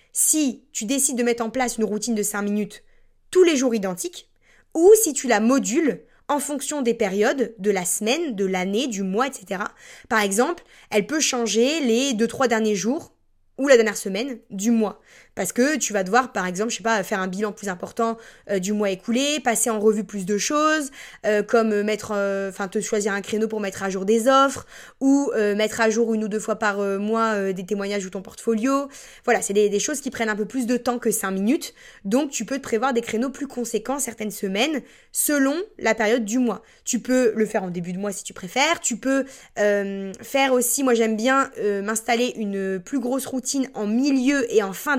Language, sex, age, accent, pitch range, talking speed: French, female, 20-39, French, 210-265 Hz, 220 wpm